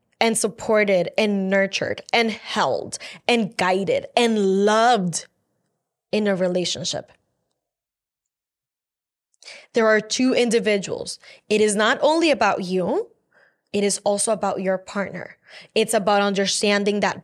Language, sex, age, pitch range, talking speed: English, female, 10-29, 200-260 Hz, 115 wpm